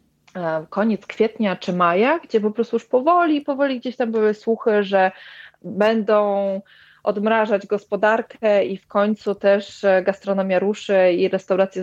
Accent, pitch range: native, 180-210 Hz